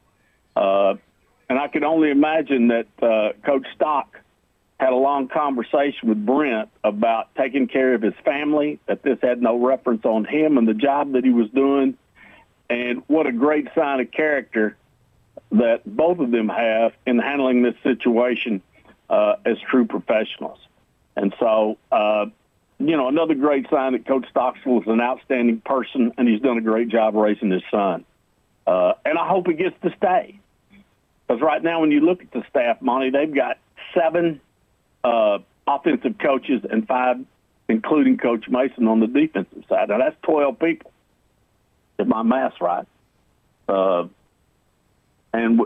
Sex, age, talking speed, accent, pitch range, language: male, 50-69, 160 wpm, American, 115-150 Hz, English